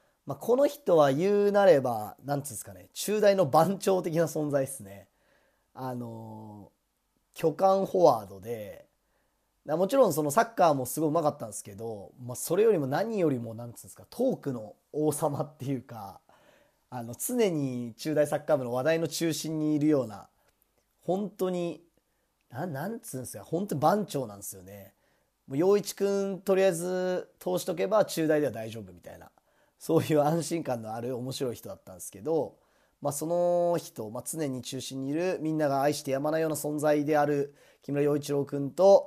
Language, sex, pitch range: Japanese, male, 120-175 Hz